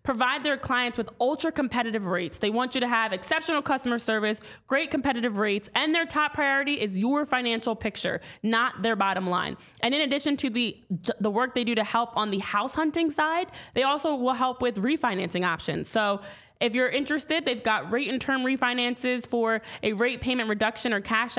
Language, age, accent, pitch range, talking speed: English, 20-39, American, 215-270 Hz, 195 wpm